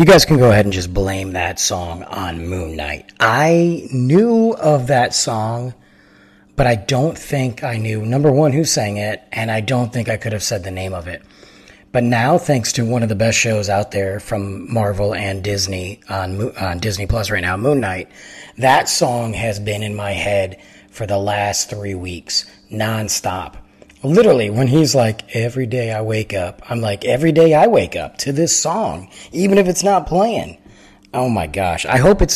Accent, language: American, English